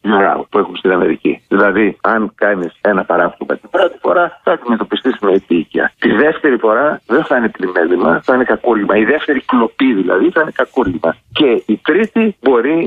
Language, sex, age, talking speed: Greek, male, 50-69, 175 wpm